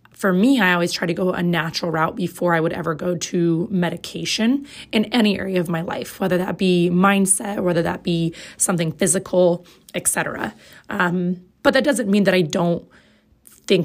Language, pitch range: English, 180-220 Hz